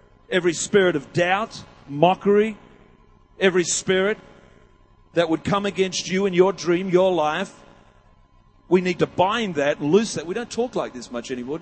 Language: English